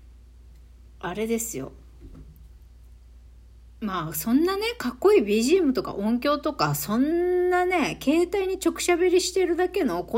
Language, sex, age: Japanese, female, 40-59